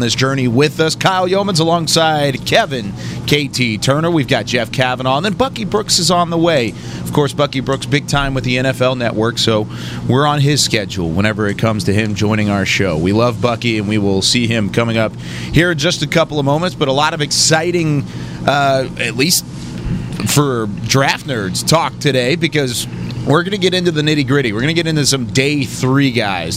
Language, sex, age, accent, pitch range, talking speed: English, male, 30-49, American, 115-160 Hz, 210 wpm